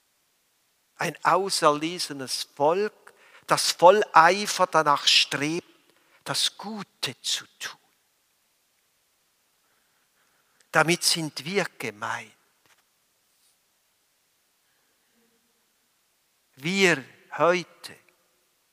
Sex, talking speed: male, 60 wpm